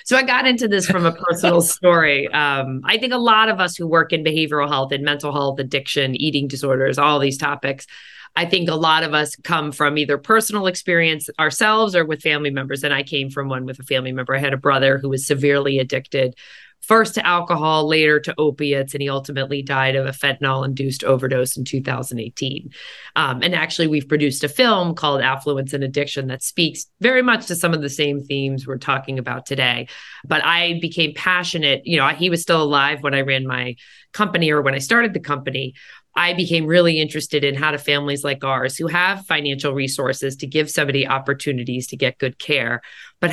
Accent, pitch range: American, 140-170 Hz